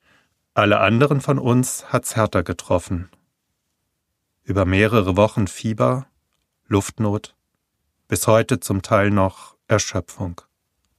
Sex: male